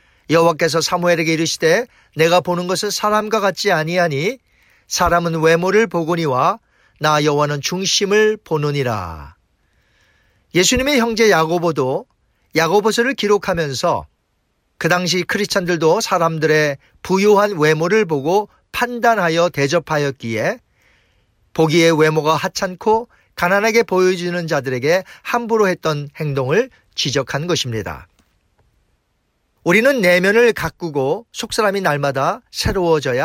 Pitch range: 145-190 Hz